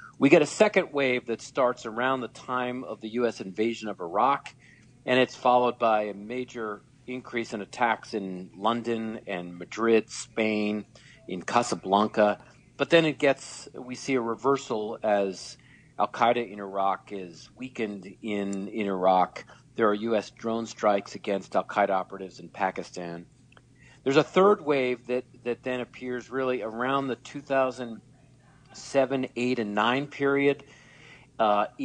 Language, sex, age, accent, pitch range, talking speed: English, male, 50-69, American, 105-125 Hz, 145 wpm